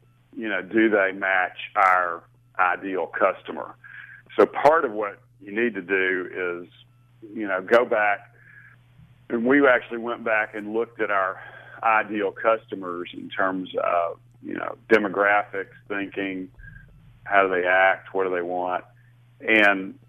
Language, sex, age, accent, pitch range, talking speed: English, male, 40-59, American, 90-120 Hz, 145 wpm